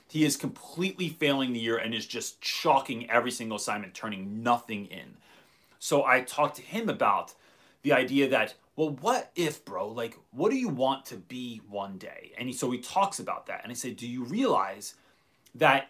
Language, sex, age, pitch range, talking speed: English, male, 30-49, 125-165 Hz, 195 wpm